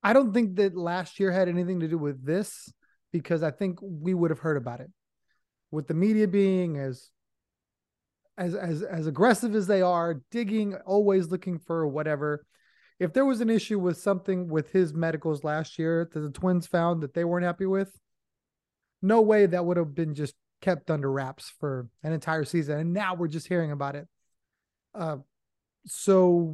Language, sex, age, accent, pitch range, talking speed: English, male, 30-49, American, 155-190 Hz, 185 wpm